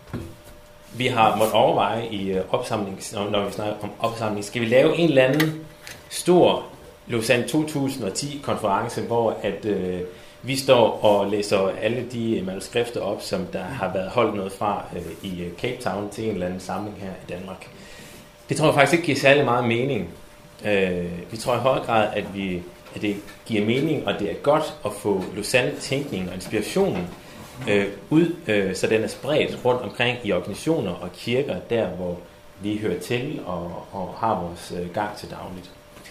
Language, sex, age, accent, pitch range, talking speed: Danish, male, 30-49, native, 95-125 Hz, 160 wpm